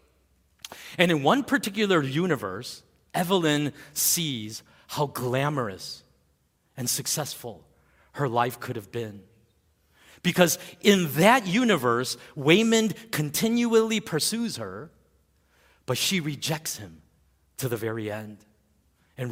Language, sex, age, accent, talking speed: English, male, 40-59, American, 105 wpm